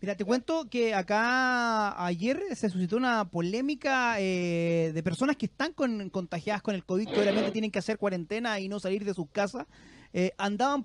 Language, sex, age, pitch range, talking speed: Spanish, male, 30-49, 195-250 Hz, 190 wpm